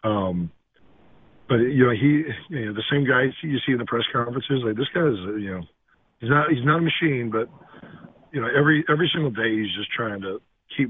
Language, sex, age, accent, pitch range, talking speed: English, male, 40-59, American, 105-130 Hz, 220 wpm